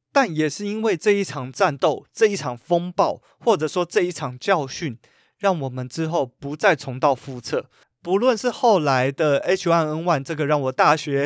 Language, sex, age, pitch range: Chinese, male, 30-49, 140-185 Hz